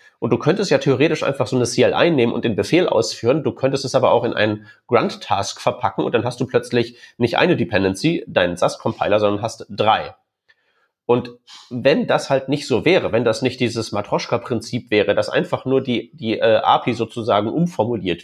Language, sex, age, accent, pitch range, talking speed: German, male, 30-49, German, 110-135 Hz, 190 wpm